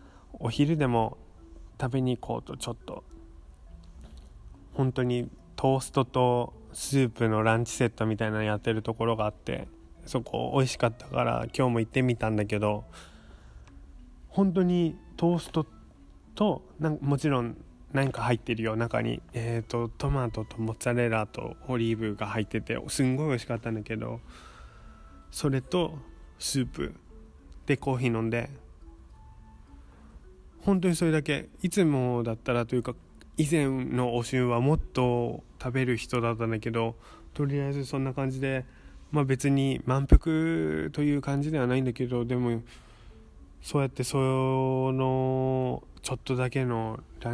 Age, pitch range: 20-39, 110-130 Hz